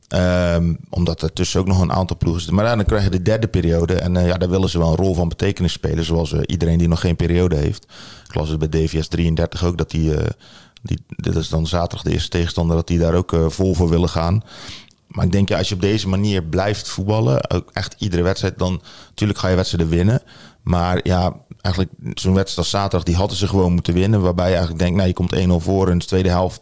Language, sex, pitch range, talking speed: Dutch, male, 85-100 Hz, 250 wpm